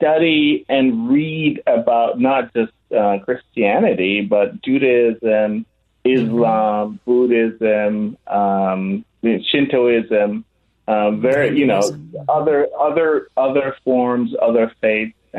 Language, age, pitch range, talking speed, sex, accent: English, 30-49, 100-120 Hz, 95 wpm, male, American